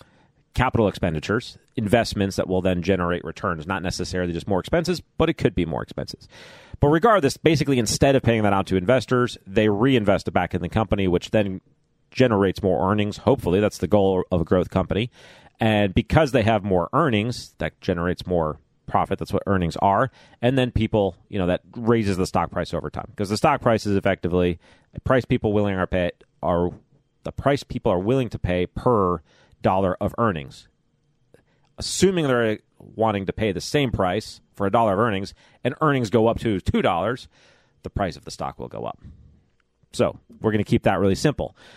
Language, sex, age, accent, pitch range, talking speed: English, male, 40-59, American, 90-120 Hz, 190 wpm